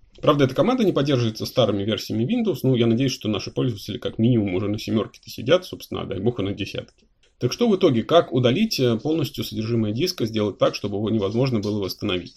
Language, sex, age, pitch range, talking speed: Russian, male, 30-49, 100-130 Hz, 215 wpm